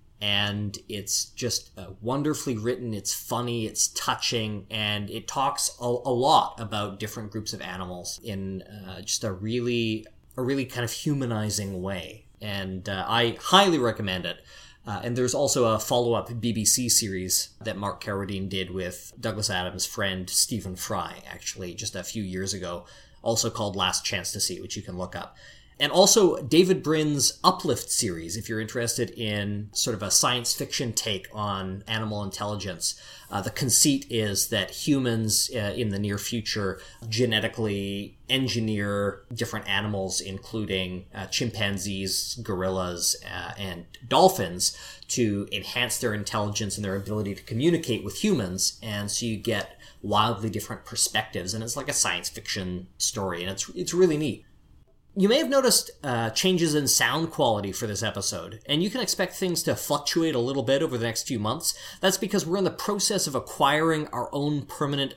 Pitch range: 100-125 Hz